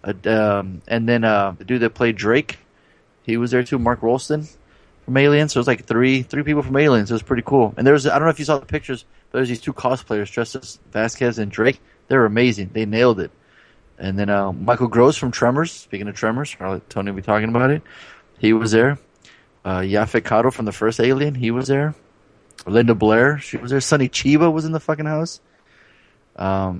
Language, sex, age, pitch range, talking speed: English, male, 30-49, 110-130 Hz, 225 wpm